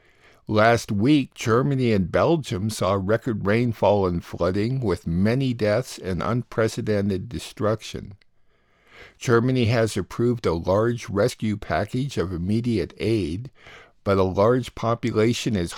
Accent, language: American, English